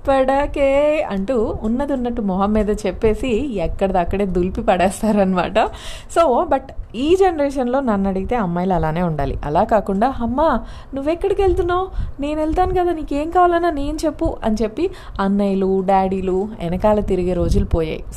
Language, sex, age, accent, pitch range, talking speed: Telugu, female, 30-49, native, 190-260 Hz, 125 wpm